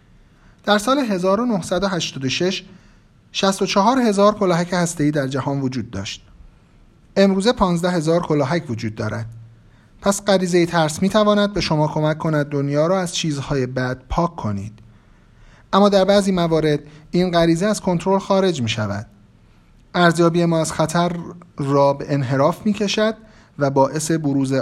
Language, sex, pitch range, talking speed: Persian, male, 135-185 Hz, 135 wpm